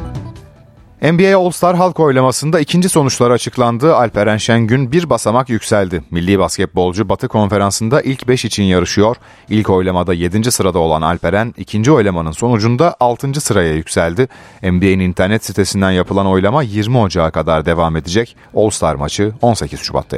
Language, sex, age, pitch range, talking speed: Turkish, male, 40-59, 95-120 Hz, 135 wpm